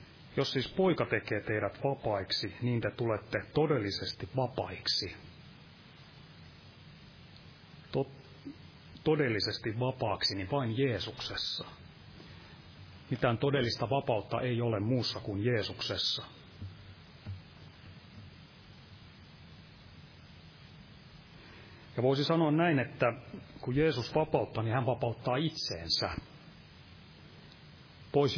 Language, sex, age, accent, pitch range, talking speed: Finnish, male, 30-49, native, 105-135 Hz, 80 wpm